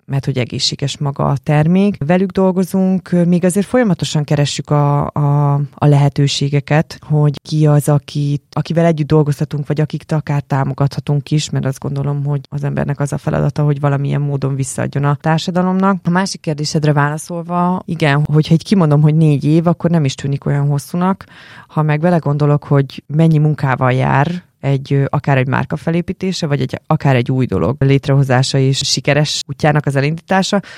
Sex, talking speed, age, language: female, 165 wpm, 20-39, Hungarian